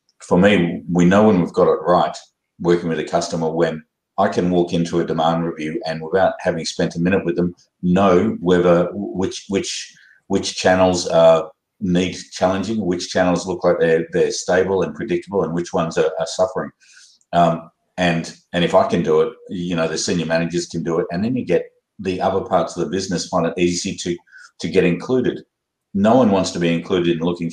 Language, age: Thai, 50-69